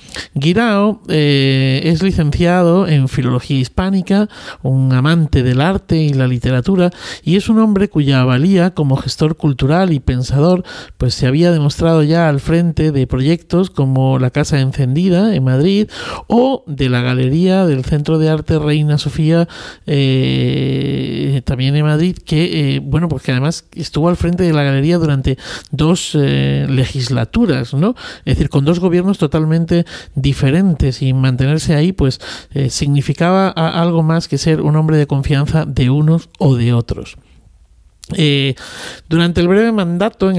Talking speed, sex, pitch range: 150 wpm, male, 135-175 Hz